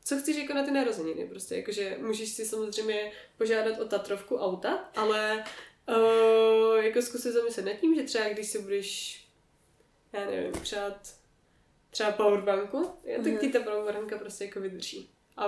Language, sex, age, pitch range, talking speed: Czech, female, 20-39, 205-250 Hz, 165 wpm